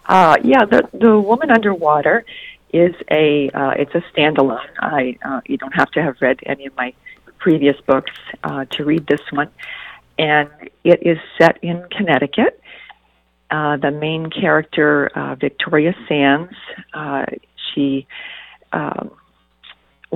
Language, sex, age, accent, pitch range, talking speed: English, female, 50-69, American, 140-175 Hz, 135 wpm